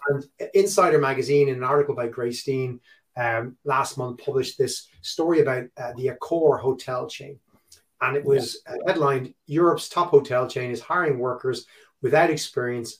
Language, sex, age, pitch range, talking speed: English, male, 30-49, 125-150 Hz, 160 wpm